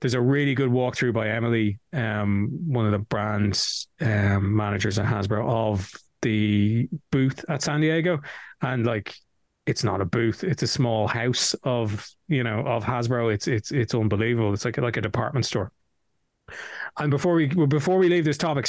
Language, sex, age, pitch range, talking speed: English, male, 20-39, 110-125 Hz, 180 wpm